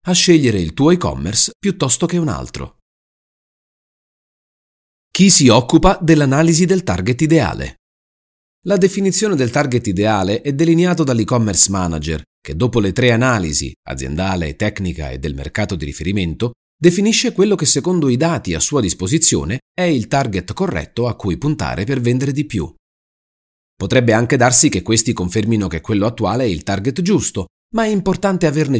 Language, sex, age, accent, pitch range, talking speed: Italian, male, 40-59, native, 90-150 Hz, 155 wpm